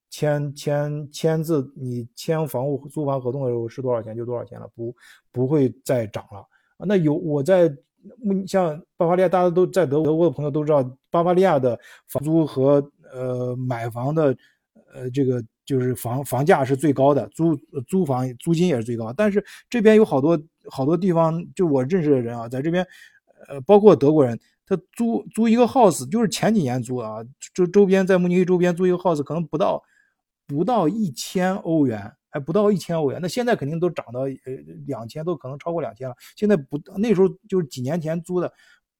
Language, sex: Chinese, male